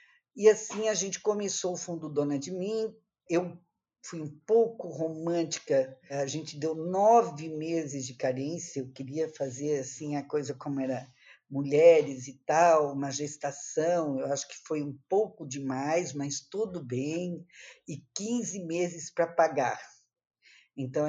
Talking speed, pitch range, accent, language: 145 wpm, 145-180 Hz, Brazilian, Portuguese